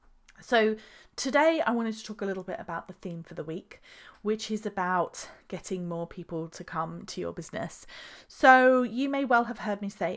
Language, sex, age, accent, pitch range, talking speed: English, female, 30-49, British, 170-210 Hz, 200 wpm